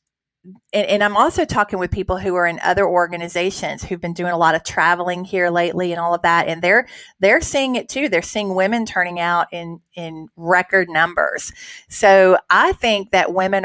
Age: 30-49